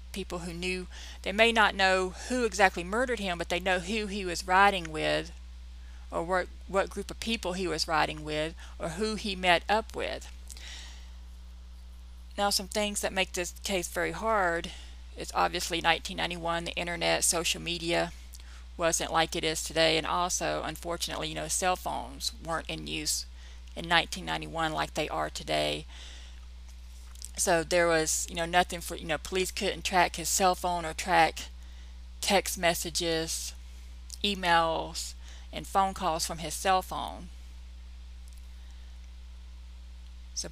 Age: 40-59